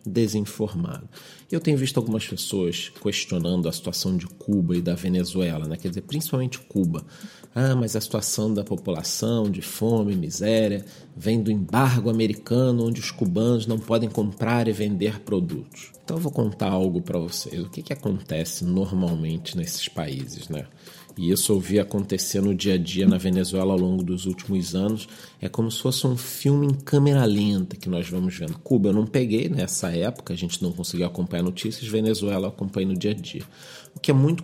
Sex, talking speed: male, 190 wpm